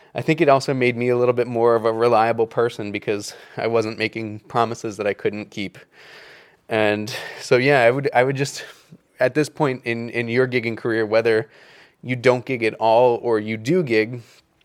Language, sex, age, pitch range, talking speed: English, male, 20-39, 115-135 Hz, 200 wpm